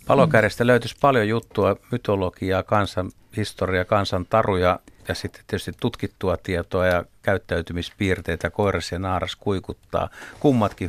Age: 60-79